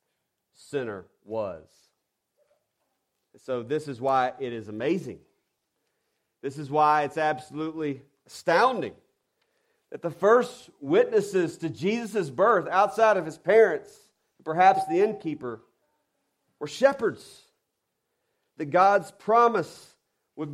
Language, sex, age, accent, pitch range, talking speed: English, male, 40-59, American, 130-180 Hz, 105 wpm